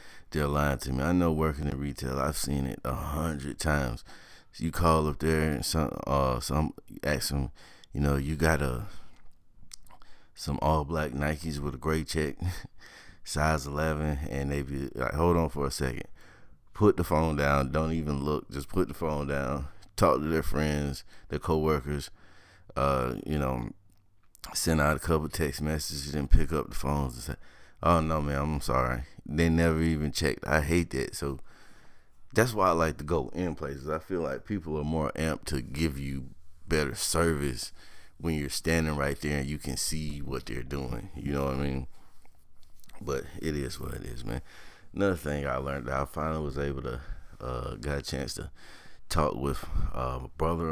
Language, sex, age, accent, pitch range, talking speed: English, male, 30-49, American, 70-80 Hz, 190 wpm